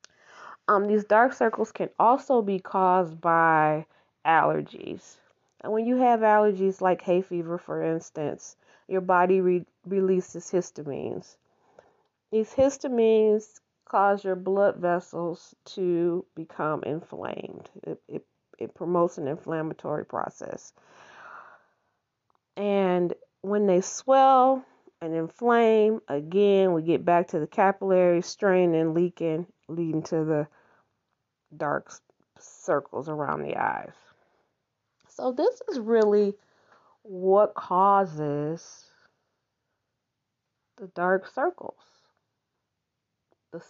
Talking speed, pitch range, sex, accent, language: 105 wpm, 170-215 Hz, female, American, English